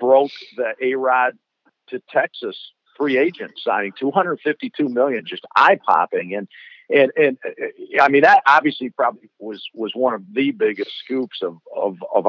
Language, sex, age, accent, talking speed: English, male, 50-69, American, 150 wpm